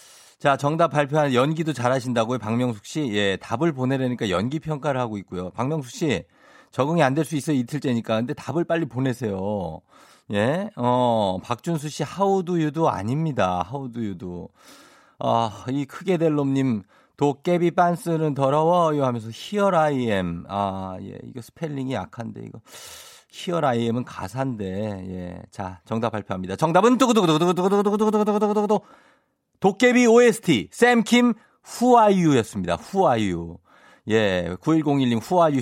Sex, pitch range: male, 105-160 Hz